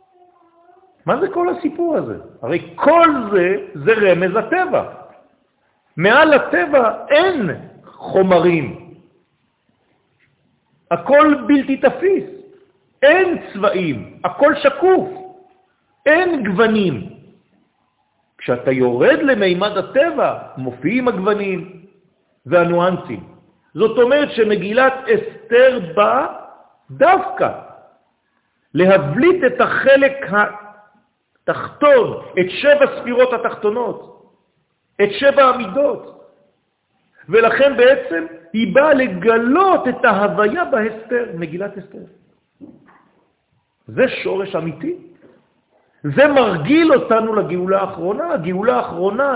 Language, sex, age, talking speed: French, male, 50-69, 80 wpm